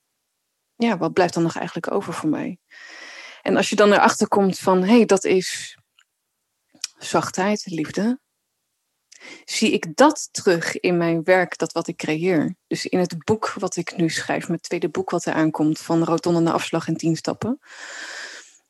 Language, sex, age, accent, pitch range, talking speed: Dutch, female, 20-39, Dutch, 165-205 Hz, 170 wpm